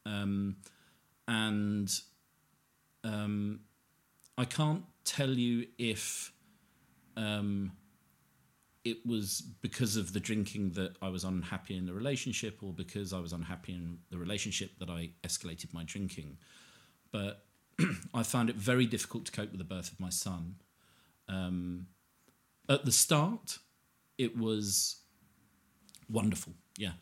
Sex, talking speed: male, 125 wpm